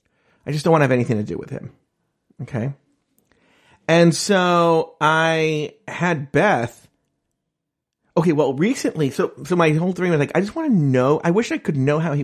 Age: 30-49